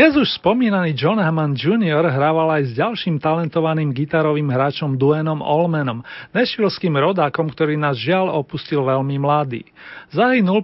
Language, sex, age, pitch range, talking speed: Slovak, male, 40-59, 145-175 Hz, 130 wpm